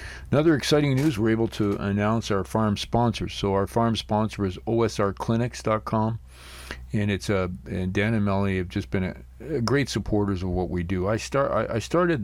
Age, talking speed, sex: 50-69, 190 wpm, male